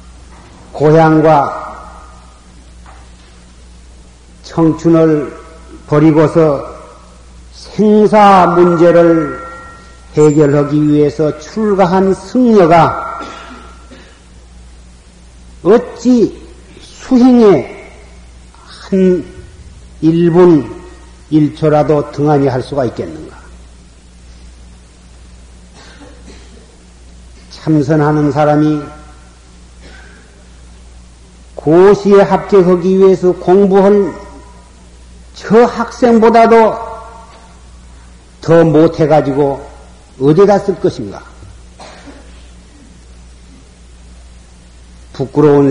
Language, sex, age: Korean, male, 50-69